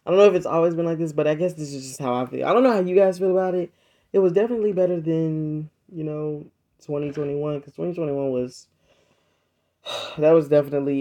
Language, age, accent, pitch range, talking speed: English, 20-39, American, 135-165 Hz, 225 wpm